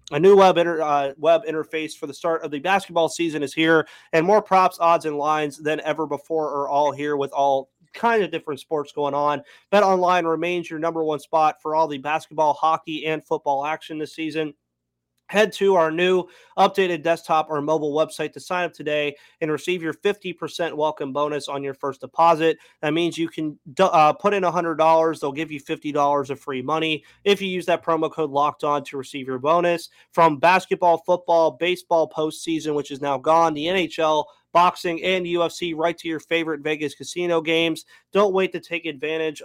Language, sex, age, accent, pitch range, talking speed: English, male, 30-49, American, 145-170 Hz, 195 wpm